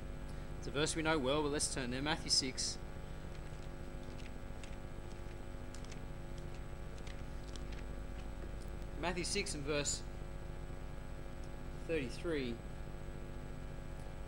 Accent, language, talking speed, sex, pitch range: Australian, English, 65 wpm, male, 140-190 Hz